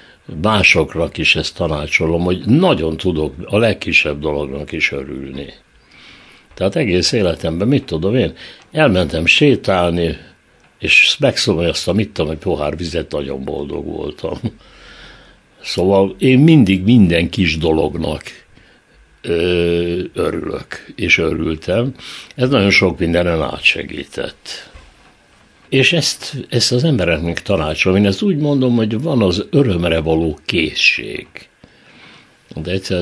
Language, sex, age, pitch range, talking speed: Hungarian, male, 60-79, 80-115 Hz, 115 wpm